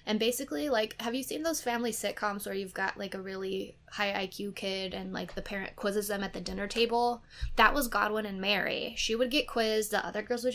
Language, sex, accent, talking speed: English, female, American, 235 wpm